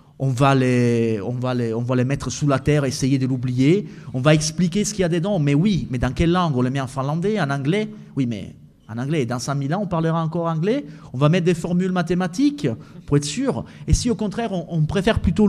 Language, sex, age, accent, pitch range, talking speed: French, male, 30-49, French, 135-185 Hz, 250 wpm